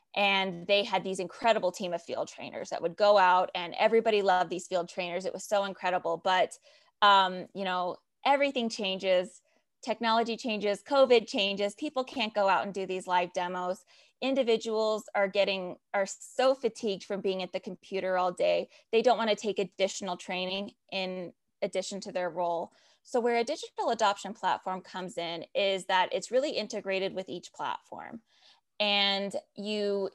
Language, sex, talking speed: English, female, 165 wpm